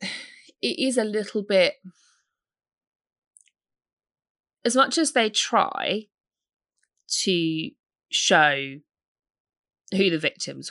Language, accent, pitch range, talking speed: English, British, 140-190 Hz, 85 wpm